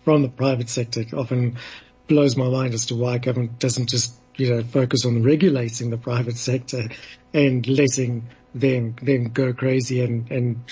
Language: English